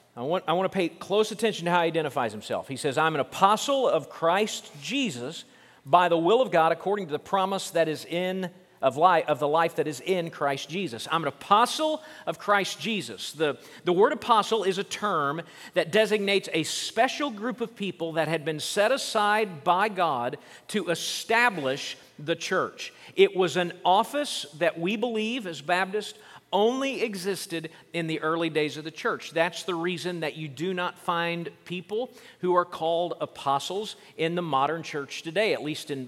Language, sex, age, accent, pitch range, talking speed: English, male, 50-69, American, 160-215 Hz, 190 wpm